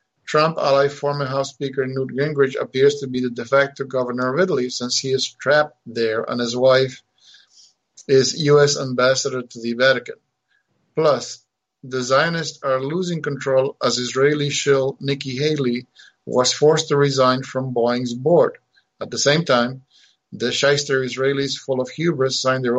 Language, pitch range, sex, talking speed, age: English, 125-145 Hz, male, 160 wpm, 50-69